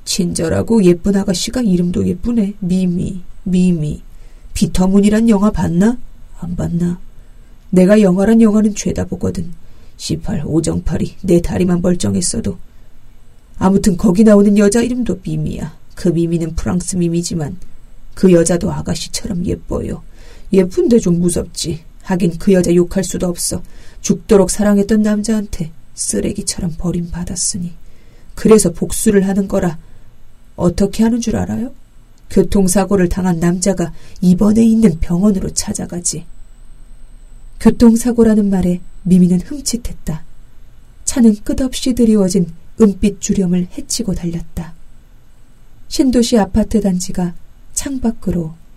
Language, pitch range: Korean, 175-205 Hz